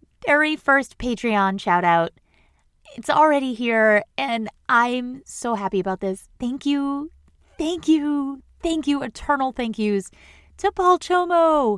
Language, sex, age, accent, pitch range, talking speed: English, female, 30-49, American, 210-285 Hz, 130 wpm